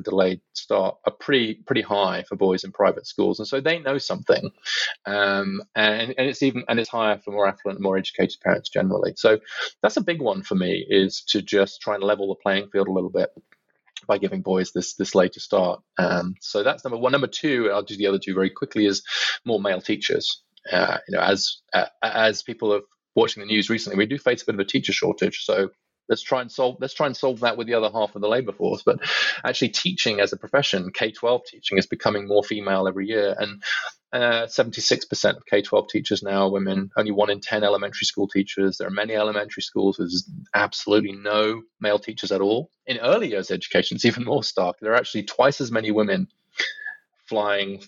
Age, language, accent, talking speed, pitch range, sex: 30-49, English, British, 215 wpm, 95-115 Hz, male